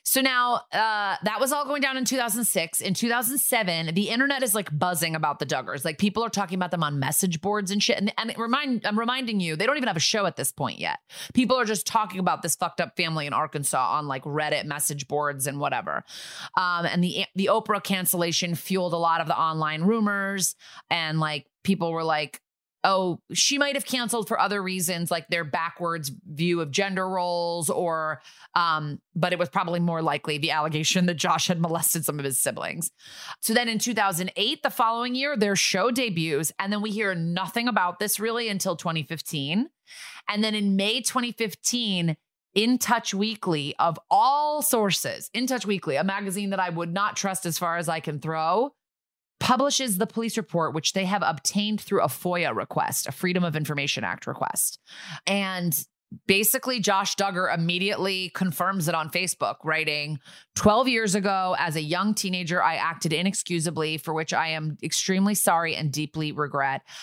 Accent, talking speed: American, 190 wpm